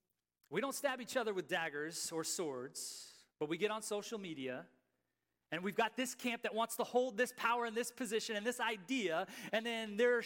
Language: English